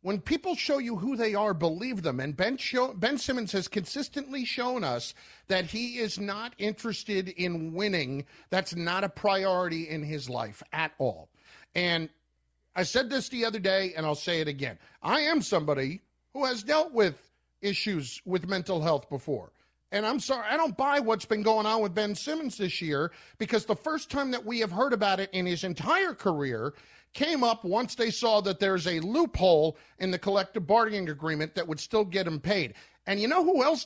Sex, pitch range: male, 170-245 Hz